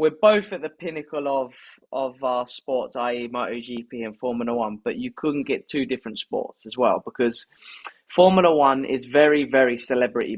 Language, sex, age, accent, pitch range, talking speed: English, male, 20-39, British, 125-165 Hz, 180 wpm